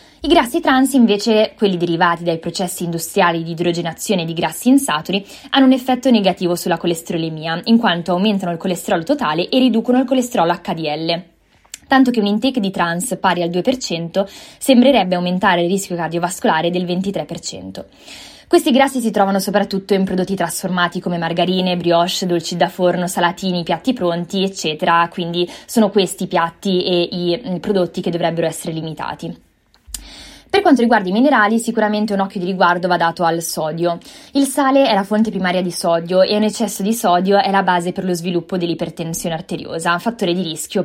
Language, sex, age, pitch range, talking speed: Italian, female, 20-39, 175-215 Hz, 170 wpm